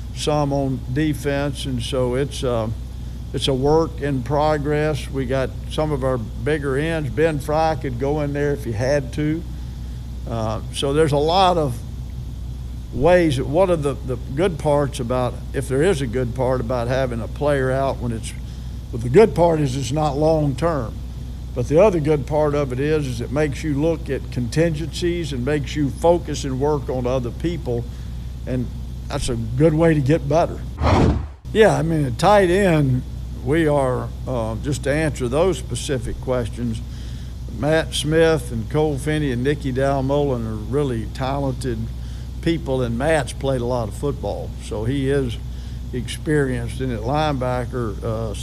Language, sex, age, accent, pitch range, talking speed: English, male, 50-69, American, 120-150 Hz, 170 wpm